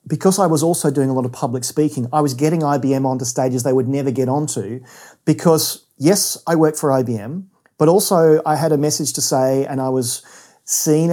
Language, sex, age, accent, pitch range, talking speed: English, male, 40-59, Australian, 130-165 Hz, 210 wpm